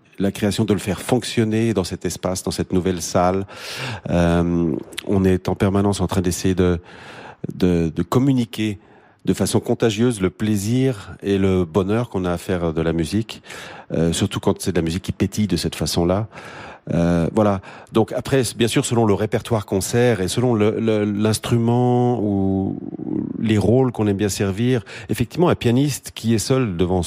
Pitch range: 90-110 Hz